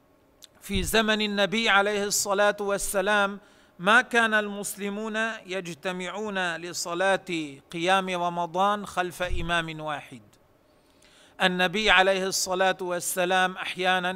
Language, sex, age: Arabic, male, 40-59